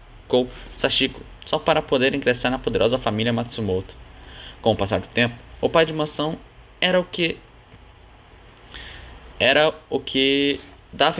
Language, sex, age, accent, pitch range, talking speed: Portuguese, male, 10-29, Brazilian, 110-135 Hz, 130 wpm